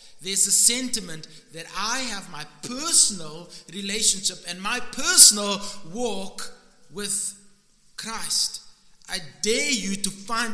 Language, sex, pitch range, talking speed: English, male, 175-240 Hz, 115 wpm